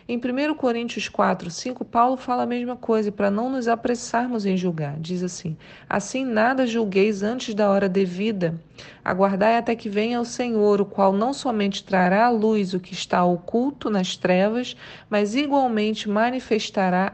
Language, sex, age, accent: Portuguese, female, 40-59, Brazilian